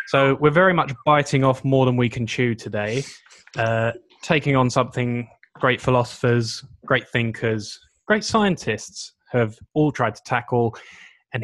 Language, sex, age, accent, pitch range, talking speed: English, male, 10-29, British, 115-150 Hz, 145 wpm